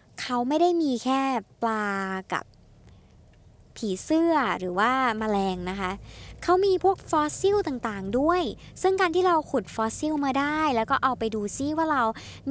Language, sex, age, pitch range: Thai, male, 20-39, 200-275 Hz